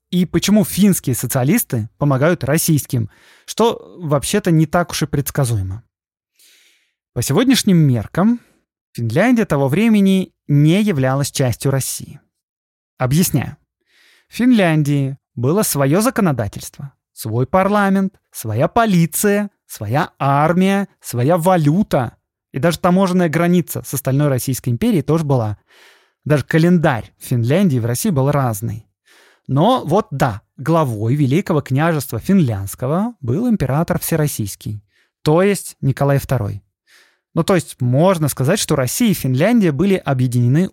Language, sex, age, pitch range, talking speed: Russian, male, 20-39, 130-185 Hz, 120 wpm